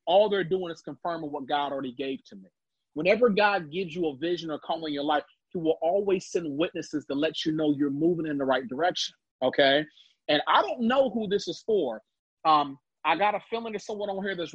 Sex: male